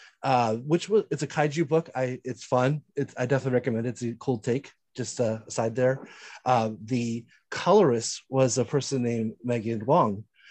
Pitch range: 120-145 Hz